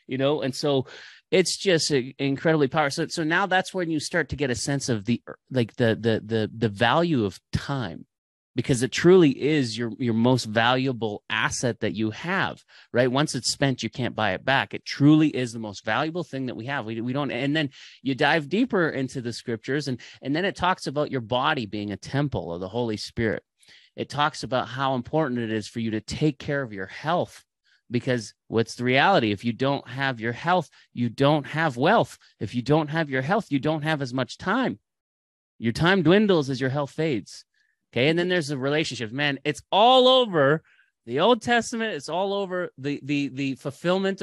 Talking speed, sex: 210 wpm, male